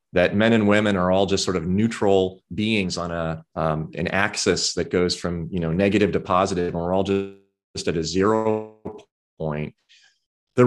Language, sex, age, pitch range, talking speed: English, male, 30-49, 90-110 Hz, 185 wpm